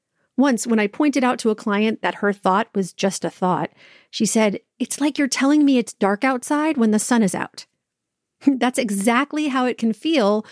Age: 40-59